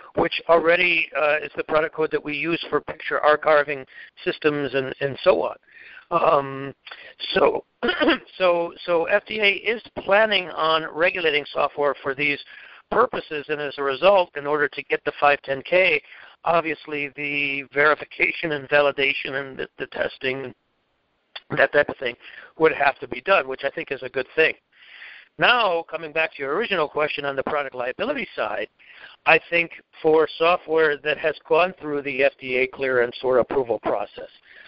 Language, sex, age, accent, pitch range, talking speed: English, male, 60-79, American, 140-160 Hz, 160 wpm